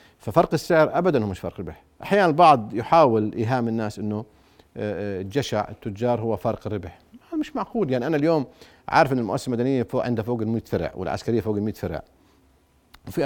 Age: 50-69